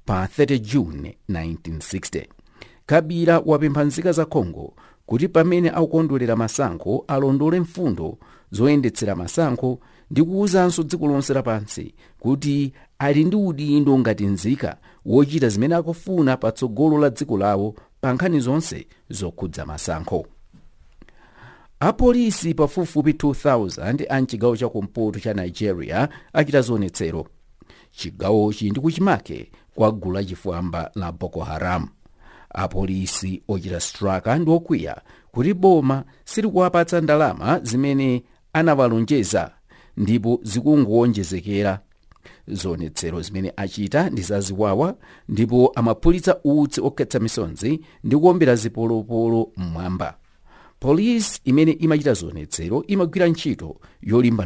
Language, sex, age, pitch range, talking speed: English, male, 50-69, 95-155 Hz, 100 wpm